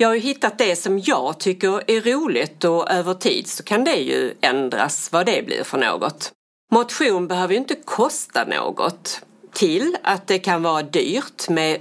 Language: Swedish